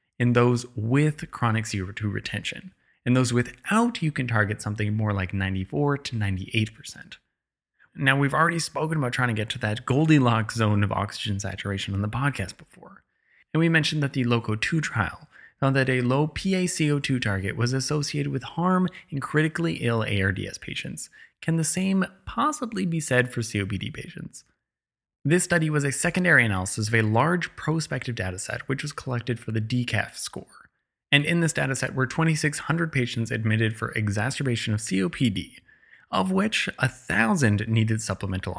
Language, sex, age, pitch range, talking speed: English, male, 20-39, 110-150 Hz, 165 wpm